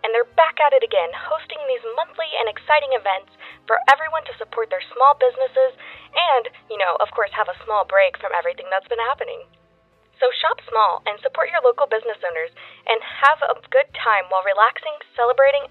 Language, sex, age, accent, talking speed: English, female, 10-29, American, 190 wpm